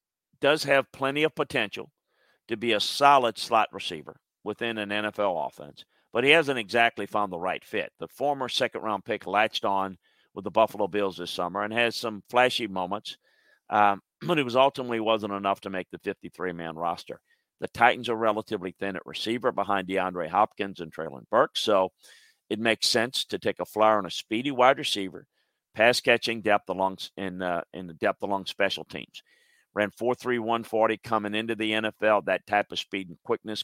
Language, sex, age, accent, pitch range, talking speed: English, male, 50-69, American, 95-115 Hz, 190 wpm